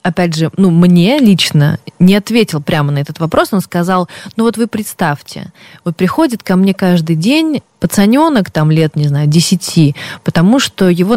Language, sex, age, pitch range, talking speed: Russian, female, 20-39, 160-195 Hz, 170 wpm